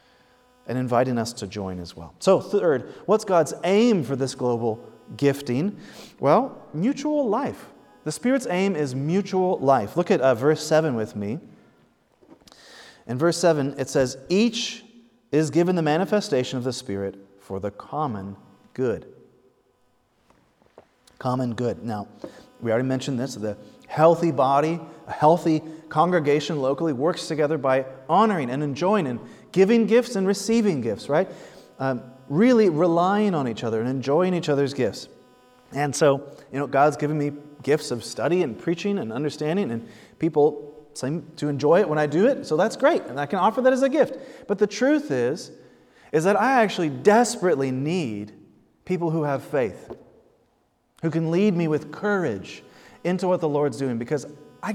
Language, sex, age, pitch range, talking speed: English, male, 30-49, 130-195 Hz, 165 wpm